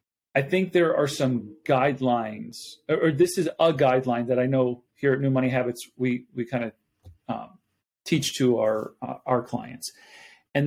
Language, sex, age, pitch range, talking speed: English, male, 40-59, 125-160 Hz, 170 wpm